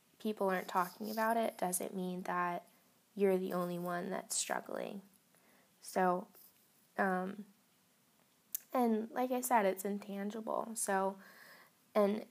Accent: American